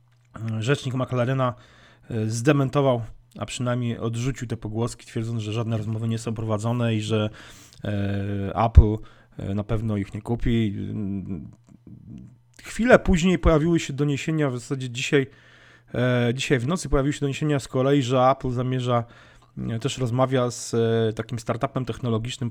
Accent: native